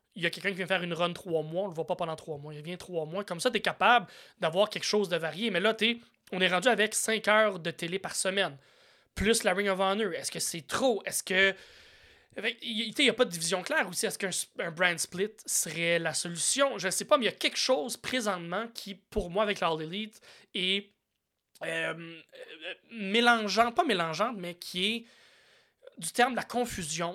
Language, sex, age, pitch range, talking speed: French, male, 20-39, 170-225 Hz, 230 wpm